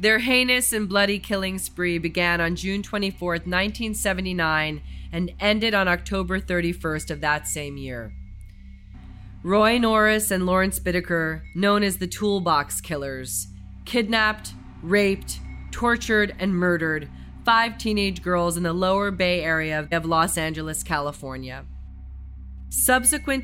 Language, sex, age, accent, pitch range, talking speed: English, female, 30-49, American, 160-205 Hz, 125 wpm